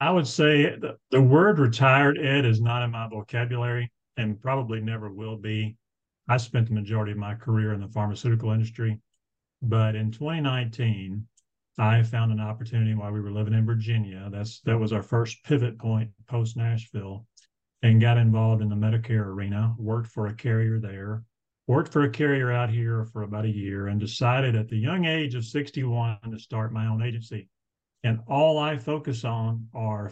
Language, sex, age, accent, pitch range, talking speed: English, male, 50-69, American, 110-125 Hz, 185 wpm